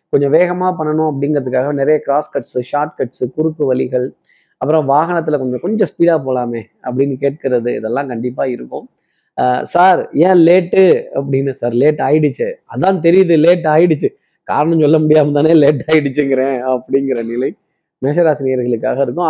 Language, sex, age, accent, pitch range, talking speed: Tamil, male, 20-39, native, 130-170 Hz, 130 wpm